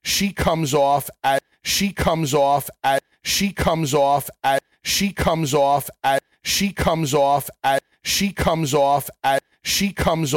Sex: male